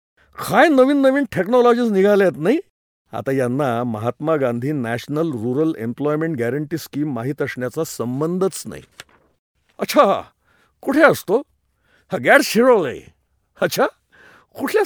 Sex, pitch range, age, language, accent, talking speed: male, 105-165 Hz, 50-69, Hindi, native, 100 wpm